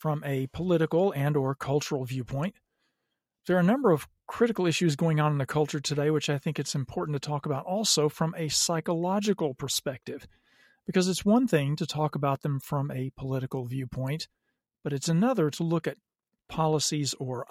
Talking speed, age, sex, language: 180 wpm, 40-59, male, English